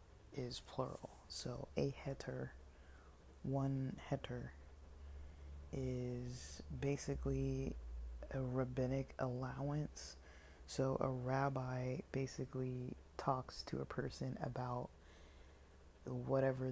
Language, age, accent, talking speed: English, 20-39, American, 80 wpm